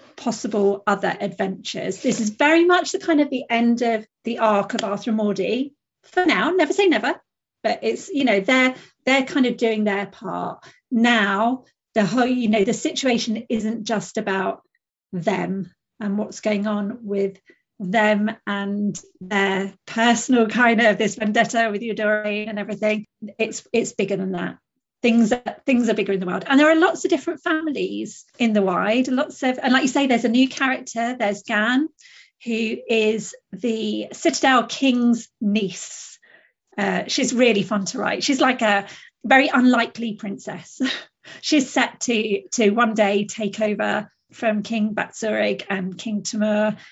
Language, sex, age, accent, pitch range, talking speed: English, female, 40-59, British, 210-260 Hz, 170 wpm